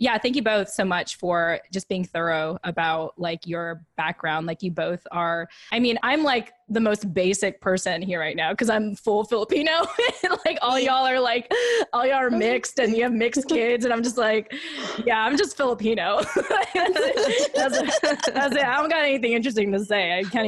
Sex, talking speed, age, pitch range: female, 190 wpm, 20-39, 175-225 Hz